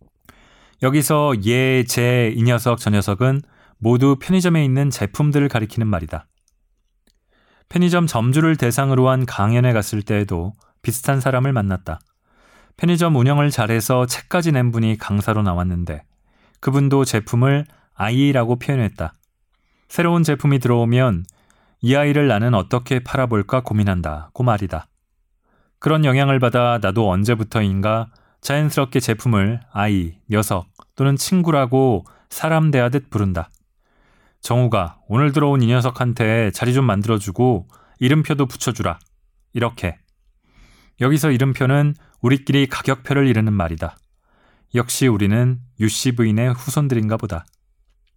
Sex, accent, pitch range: male, native, 100-140 Hz